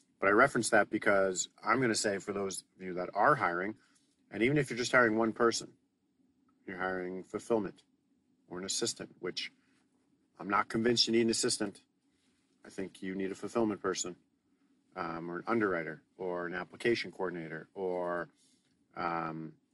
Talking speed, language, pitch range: 165 wpm, English, 95-115 Hz